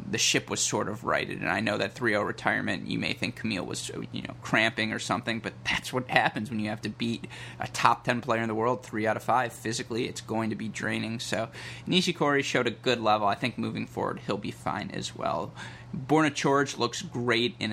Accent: American